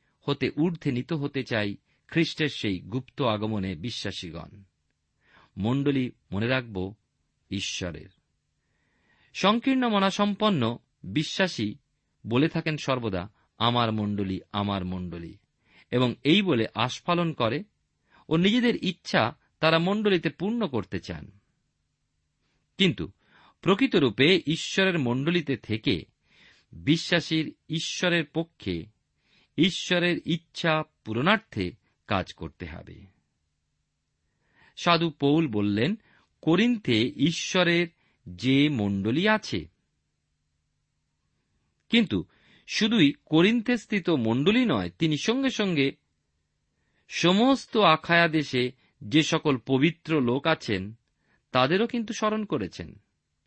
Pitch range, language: 105-175 Hz, Bengali